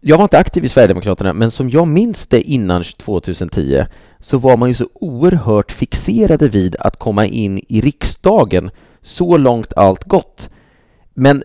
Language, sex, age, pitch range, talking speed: English, male, 30-49, 105-145 Hz, 160 wpm